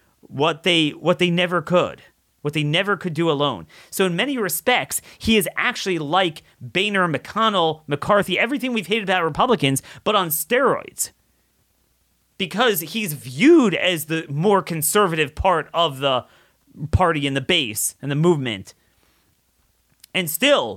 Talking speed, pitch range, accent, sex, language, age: 145 wpm, 120-180 Hz, American, male, English, 30-49